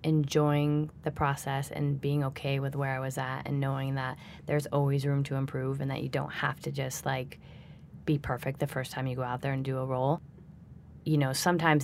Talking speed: 220 wpm